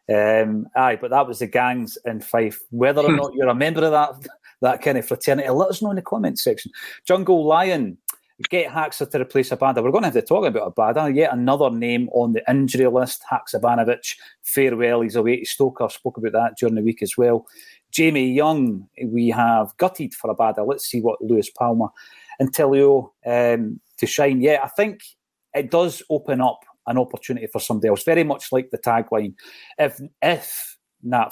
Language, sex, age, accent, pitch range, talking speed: English, male, 30-49, British, 115-150 Hz, 190 wpm